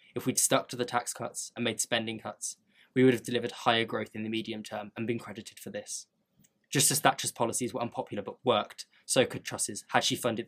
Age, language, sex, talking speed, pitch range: 10-29, English, male, 230 wpm, 110-130 Hz